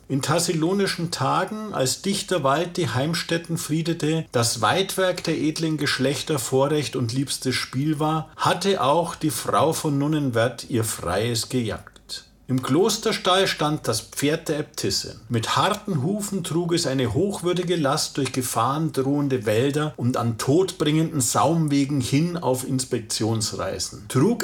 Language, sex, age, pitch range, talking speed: German, male, 50-69, 120-160 Hz, 135 wpm